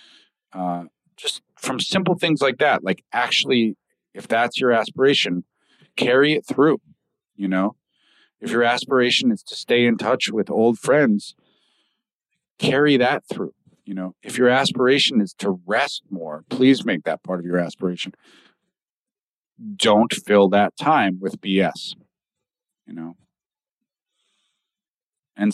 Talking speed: 135 wpm